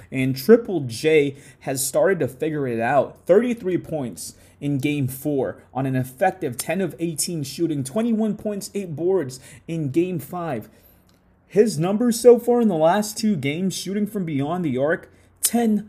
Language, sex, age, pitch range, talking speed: English, male, 30-49, 145-200 Hz, 160 wpm